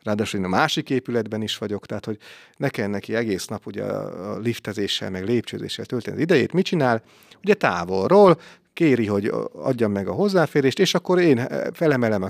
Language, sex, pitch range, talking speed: Hungarian, male, 105-140 Hz, 175 wpm